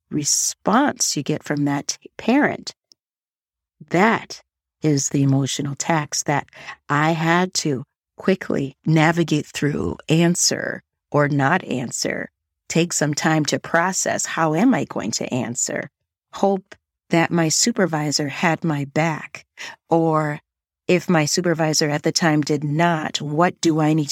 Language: English